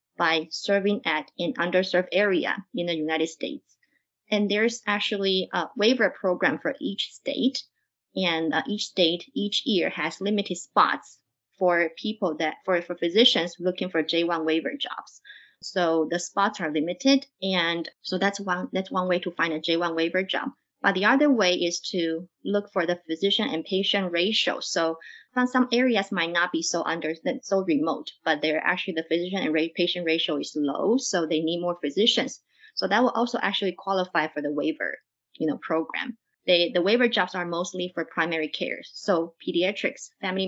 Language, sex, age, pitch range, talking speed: English, female, 20-39, 165-205 Hz, 175 wpm